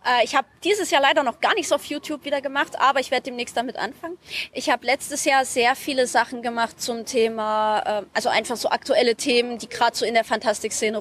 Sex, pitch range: female, 235-295 Hz